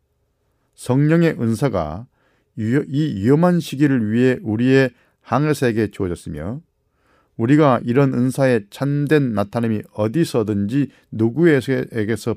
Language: Korean